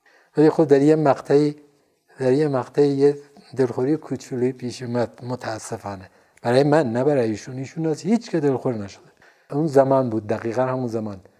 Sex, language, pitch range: male, Persian, 120-155 Hz